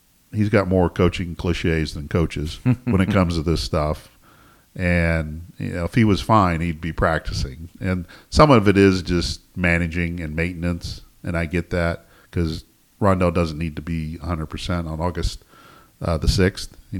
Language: English